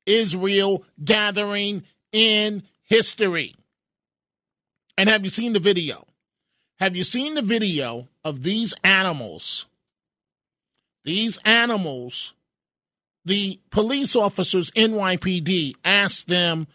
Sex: male